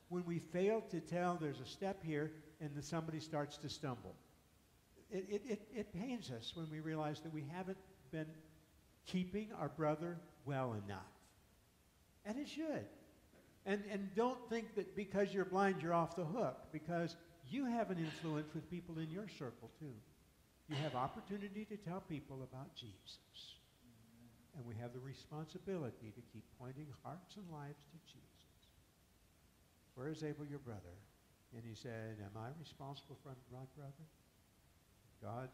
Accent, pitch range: American, 115-190 Hz